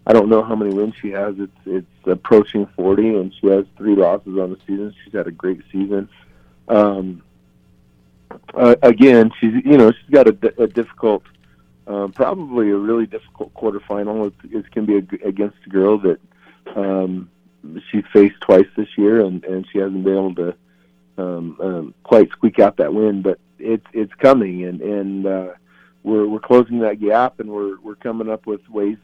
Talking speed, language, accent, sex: 190 wpm, English, American, male